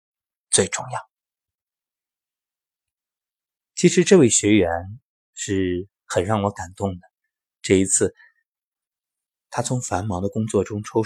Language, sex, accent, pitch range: Chinese, male, native, 95-140 Hz